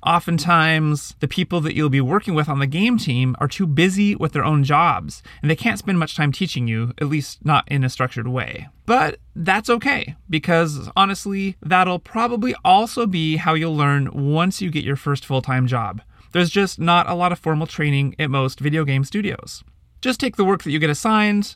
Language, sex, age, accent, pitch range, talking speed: English, male, 30-49, American, 140-185 Hz, 205 wpm